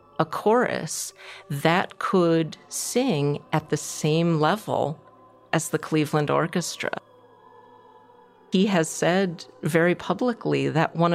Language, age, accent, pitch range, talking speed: English, 40-59, American, 150-190 Hz, 110 wpm